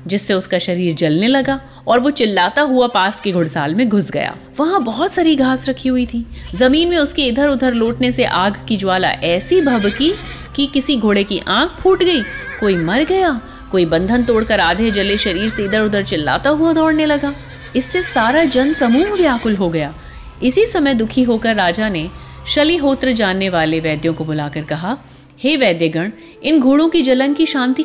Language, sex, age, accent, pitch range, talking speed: Hindi, female, 30-49, native, 185-275 Hz, 185 wpm